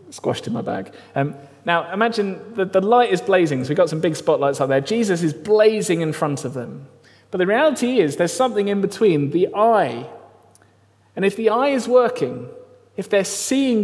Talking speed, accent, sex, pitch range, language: 200 wpm, British, male, 120-195 Hz, English